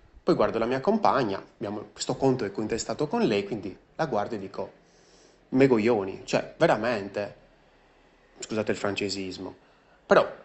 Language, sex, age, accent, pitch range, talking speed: Italian, male, 30-49, native, 105-130 Hz, 130 wpm